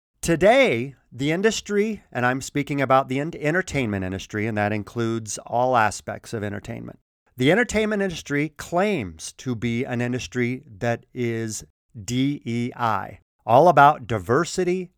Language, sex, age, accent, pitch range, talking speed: English, male, 50-69, American, 110-165 Hz, 125 wpm